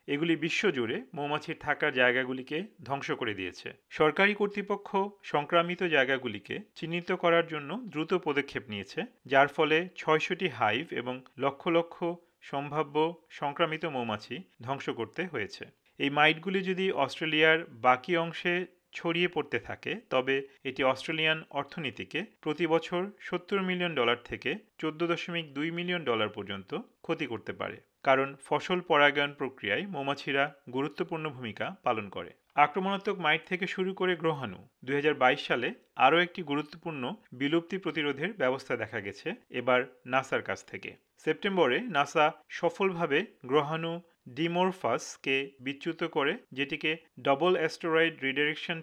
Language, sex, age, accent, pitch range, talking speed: Bengali, male, 40-59, native, 135-175 Hz, 110 wpm